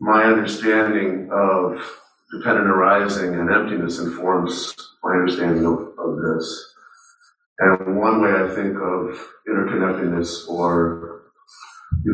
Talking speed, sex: 110 wpm, male